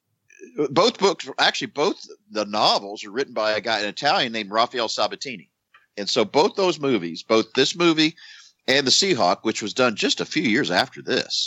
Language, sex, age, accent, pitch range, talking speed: English, male, 50-69, American, 100-130 Hz, 190 wpm